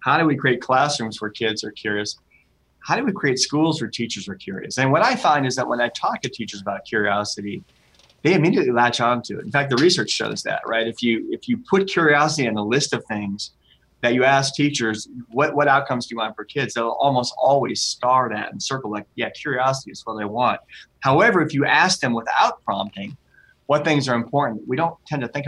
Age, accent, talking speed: 30-49, American, 230 wpm